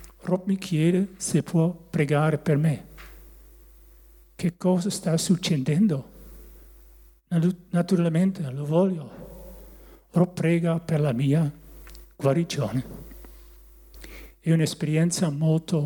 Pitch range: 150-180 Hz